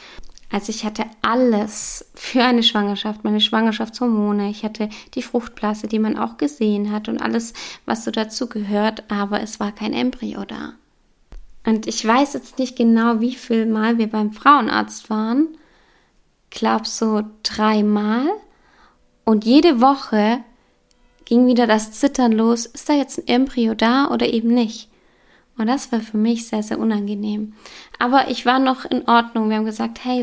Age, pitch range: 20-39, 215-245 Hz